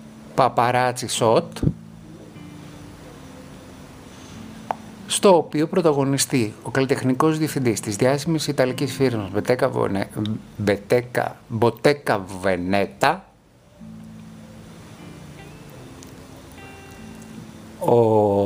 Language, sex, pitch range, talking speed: Greek, male, 110-170 Hz, 50 wpm